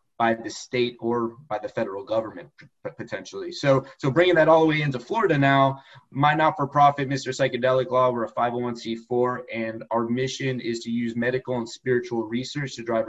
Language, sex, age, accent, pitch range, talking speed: English, male, 20-39, American, 120-140 Hz, 185 wpm